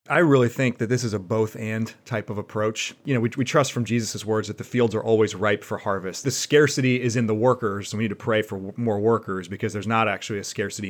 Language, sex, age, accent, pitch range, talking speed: English, male, 30-49, American, 100-120 Hz, 260 wpm